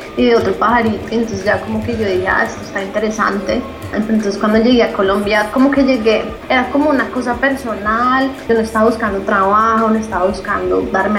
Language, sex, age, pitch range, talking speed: Spanish, female, 20-39, 200-235 Hz, 195 wpm